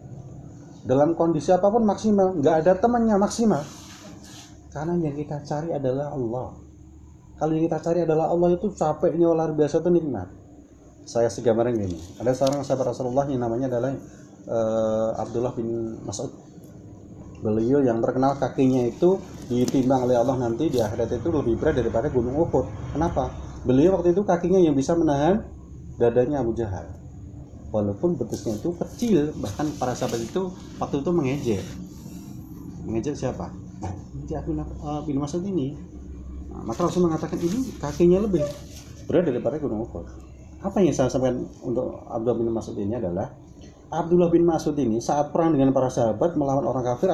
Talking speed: 150 wpm